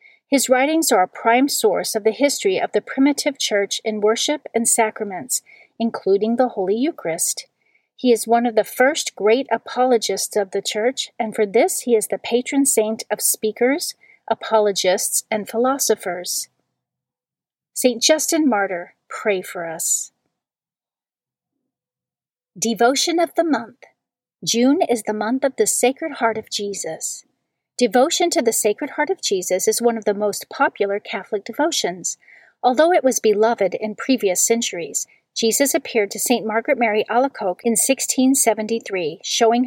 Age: 40-59